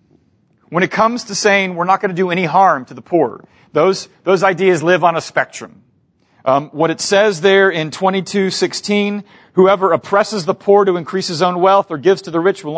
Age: 40-59